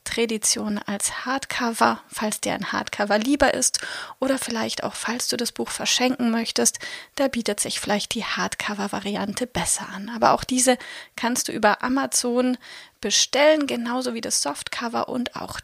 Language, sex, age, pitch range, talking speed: German, female, 30-49, 230-275 Hz, 155 wpm